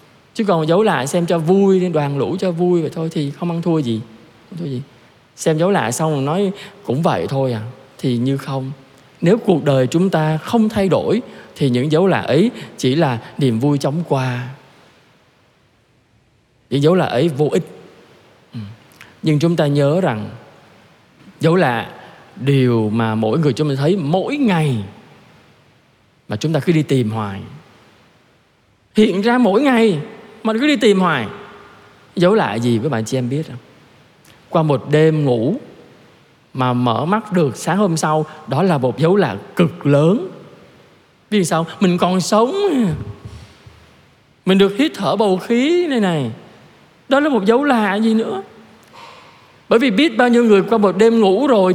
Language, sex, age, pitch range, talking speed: Vietnamese, male, 20-39, 135-215 Hz, 175 wpm